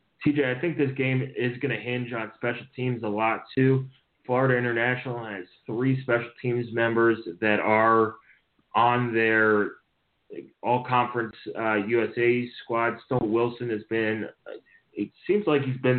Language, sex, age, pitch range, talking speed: English, male, 20-39, 110-125 Hz, 150 wpm